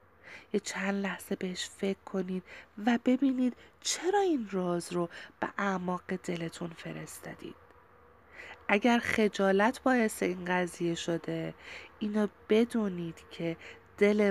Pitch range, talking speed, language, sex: 175-210 Hz, 105 wpm, Persian, female